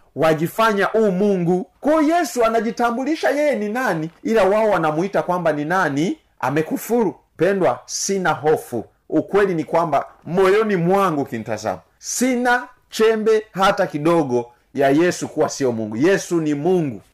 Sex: male